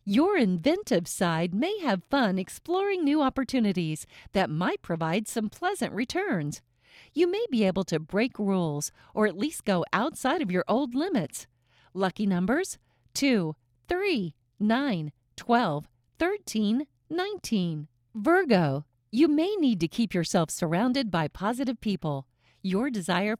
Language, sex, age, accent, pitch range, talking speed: English, female, 50-69, American, 165-270 Hz, 135 wpm